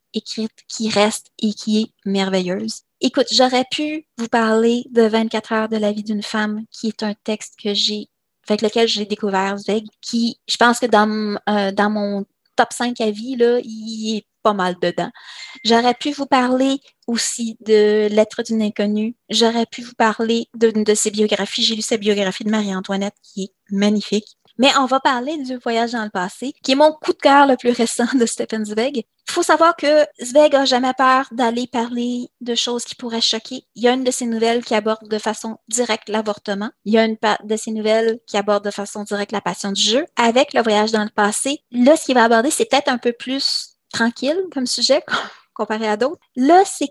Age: 30-49